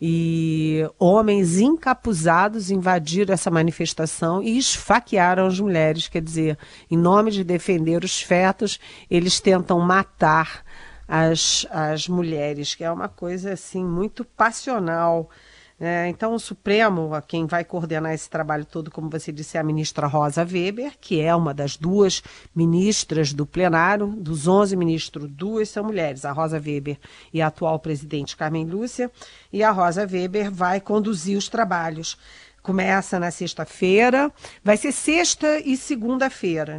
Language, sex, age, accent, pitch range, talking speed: Portuguese, female, 40-59, Brazilian, 165-210 Hz, 140 wpm